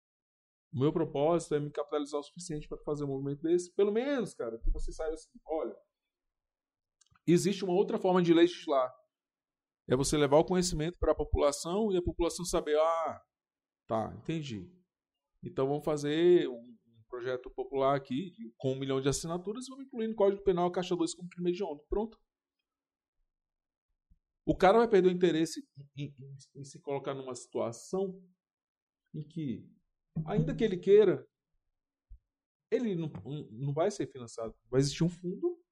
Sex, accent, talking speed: male, Brazilian, 165 wpm